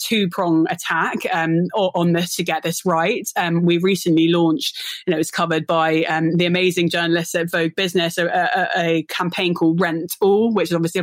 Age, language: 20-39, English